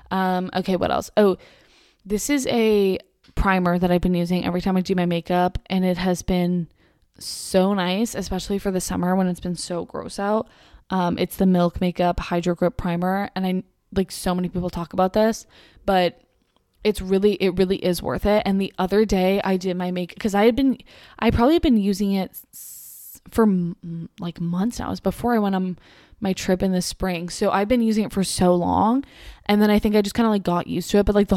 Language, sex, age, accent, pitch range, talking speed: English, female, 20-39, American, 180-210 Hz, 225 wpm